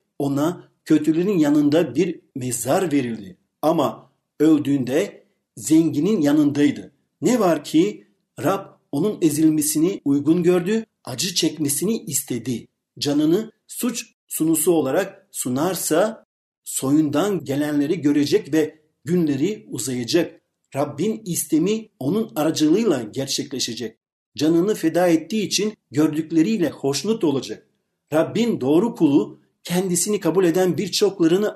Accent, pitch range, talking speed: native, 140-190 Hz, 95 wpm